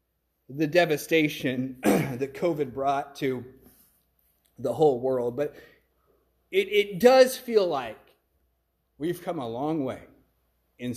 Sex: male